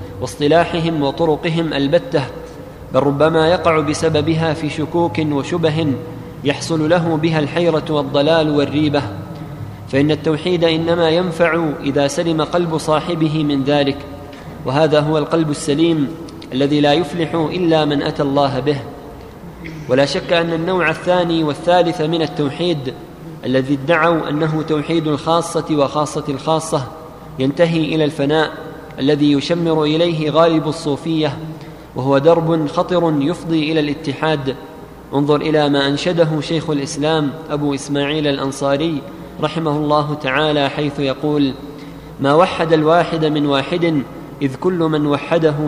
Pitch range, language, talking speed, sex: 145-165 Hz, Arabic, 120 wpm, male